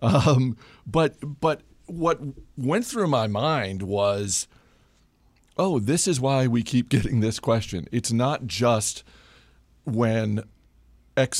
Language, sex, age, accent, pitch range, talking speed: English, male, 40-59, American, 100-125 Hz, 120 wpm